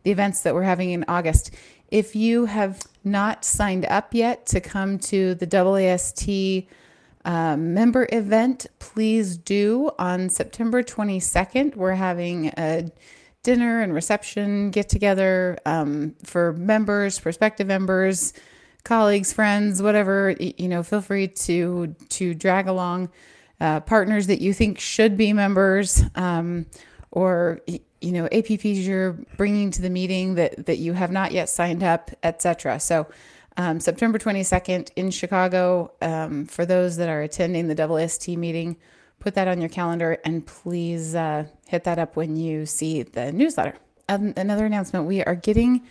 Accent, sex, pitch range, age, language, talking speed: American, female, 170-205 Hz, 30-49, English, 150 wpm